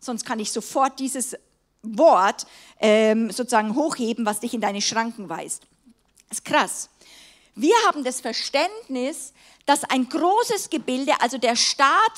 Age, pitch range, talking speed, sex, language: 50-69, 235-330 Hz, 145 wpm, female, German